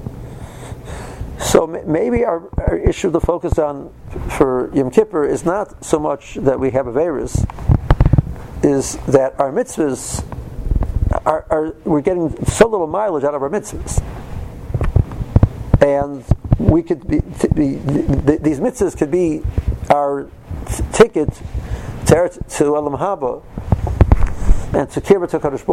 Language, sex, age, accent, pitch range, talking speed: English, male, 60-79, American, 105-155 Hz, 125 wpm